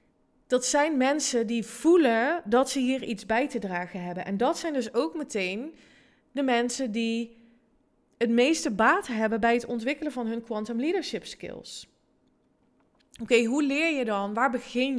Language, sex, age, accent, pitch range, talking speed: Dutch, female, 20-39, Dutch, 200-265 Hz, 165 wpm